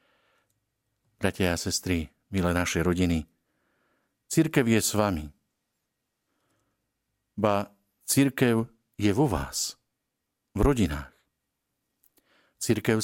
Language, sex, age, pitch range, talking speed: Slovak, male, 50-69, 90-125 Hz, 80 wpm